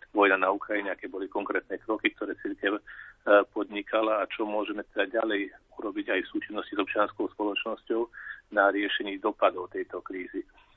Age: 40-59